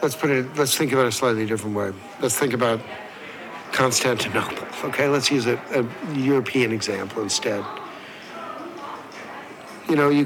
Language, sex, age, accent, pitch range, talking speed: English, male, 60-79, American, 115-140 Hz, 150 wpm